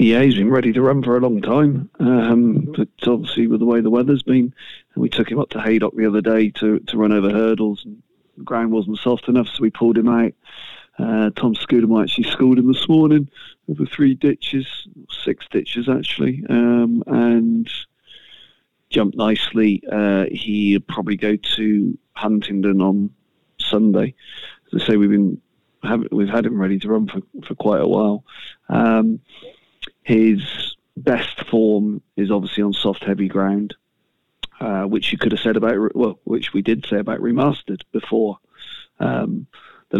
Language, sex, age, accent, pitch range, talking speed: English, male, 40-59, British, 105-120 Hz, 170 wpm